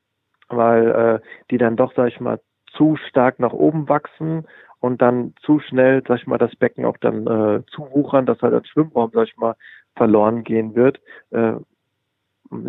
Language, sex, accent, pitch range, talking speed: German, male, German, 115-135 Hz, 180 wpm